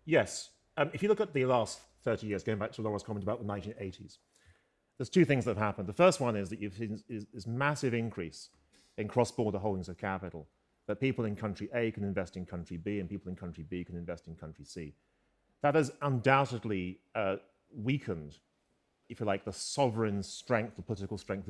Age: 40-59